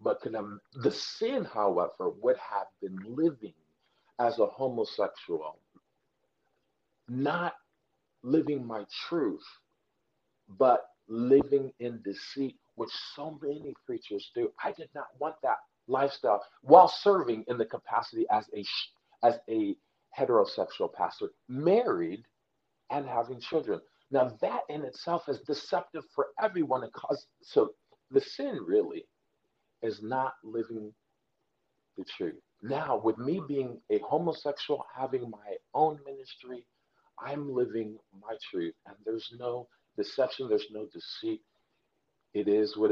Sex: male